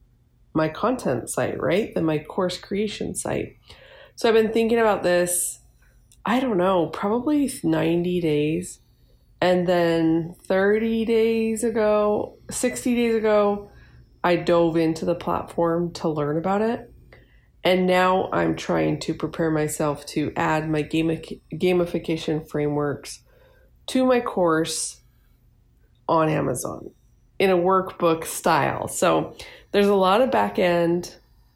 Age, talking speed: 20-39, 125 wpm